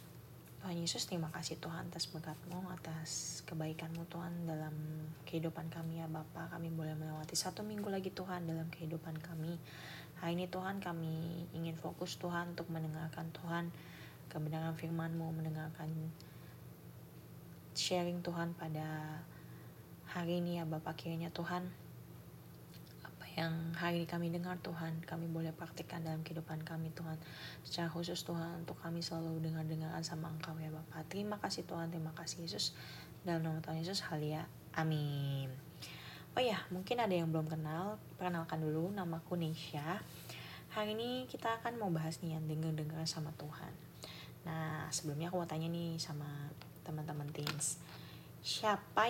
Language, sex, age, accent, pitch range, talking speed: Indonesian, female, 20-39, native, 155-170 Hz, 145 wpm